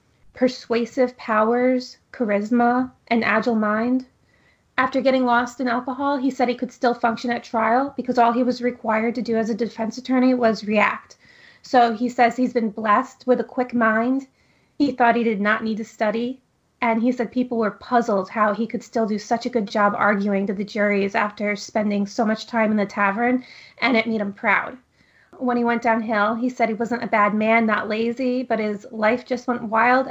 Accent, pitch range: American, 215-245 Hz